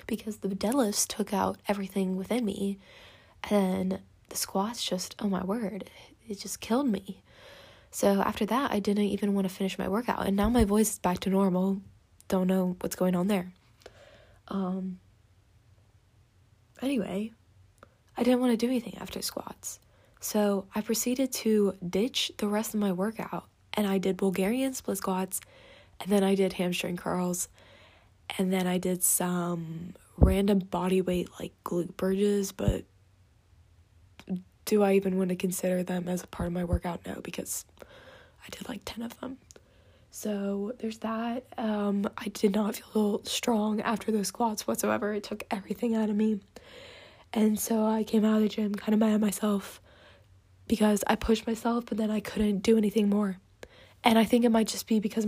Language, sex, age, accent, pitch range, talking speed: English, female, 20-39, American, 180-220 Hz, 175 wpm